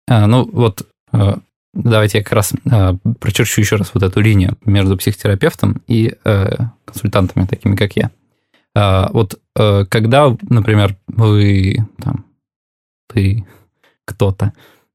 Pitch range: 105-125 Hz